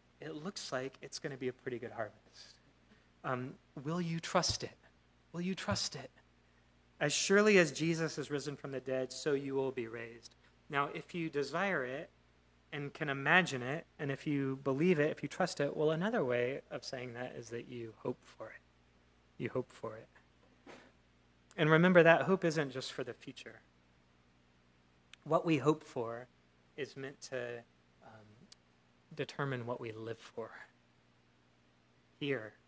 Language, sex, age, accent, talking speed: English, male, 30-49, American, 165 wpm